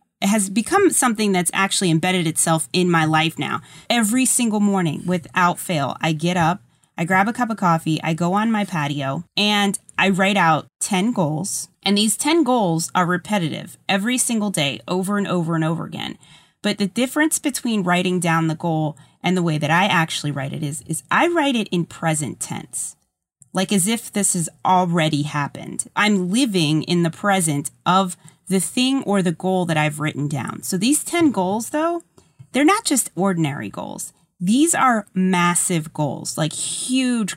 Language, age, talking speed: English, 30-49, 185 wpm